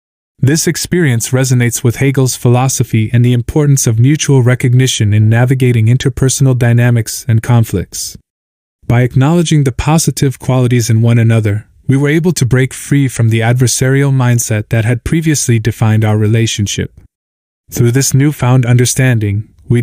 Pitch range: 110-135 Hz